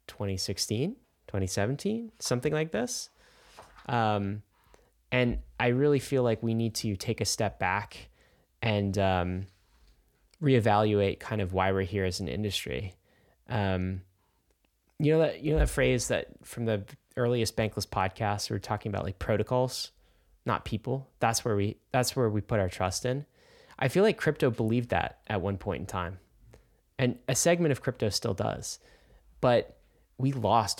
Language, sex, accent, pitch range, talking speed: English, male, American, 100-125 Hz, 160 wpm